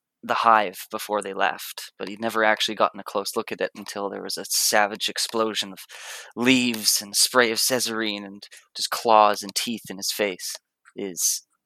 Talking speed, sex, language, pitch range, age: 185 wpm, male, English, 105-120 Hz, 20-39